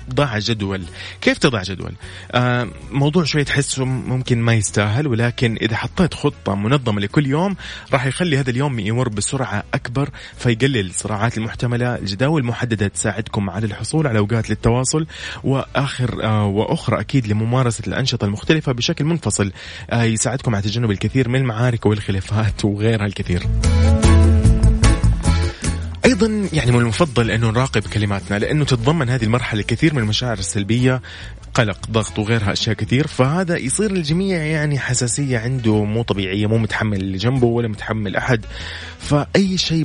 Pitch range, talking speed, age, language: 105-130 Hz, 135 wpm, 20-39, Arabic